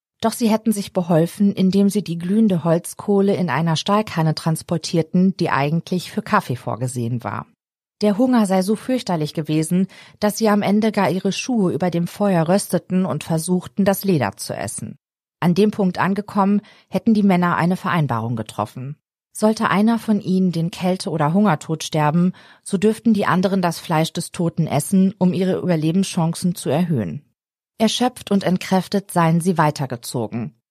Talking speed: 160 wpm